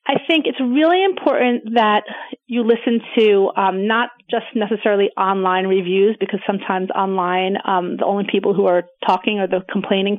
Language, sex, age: English, female, 30-49